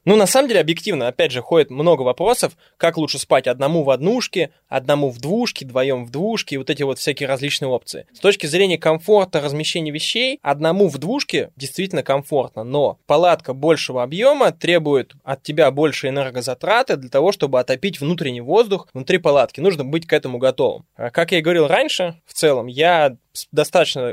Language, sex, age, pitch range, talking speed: Russian, male, 20-39, 135-170 Hz, 175 wpm